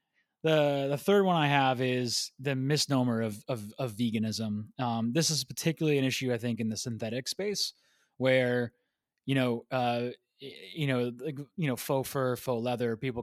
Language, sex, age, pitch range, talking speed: English, male, 20-39, 120-145 Hz, 175 wpm